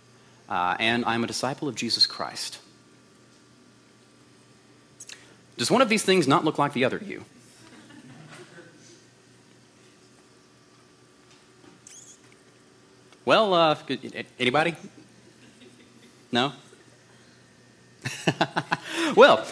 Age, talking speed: 30-49, 75 wpm